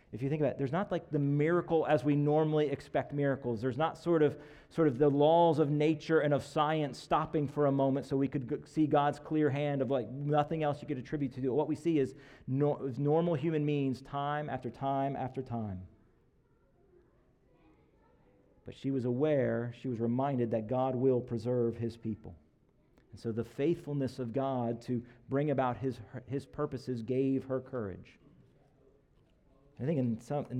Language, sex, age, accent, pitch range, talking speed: English, male, 40-59, American, 125-150 Hz, 185 wpm